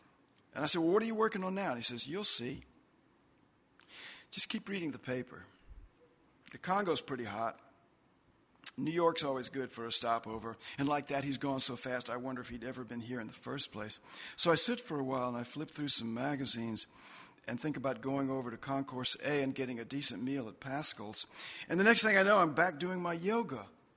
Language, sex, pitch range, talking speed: English, male, 120-165 Hz, 220 wpm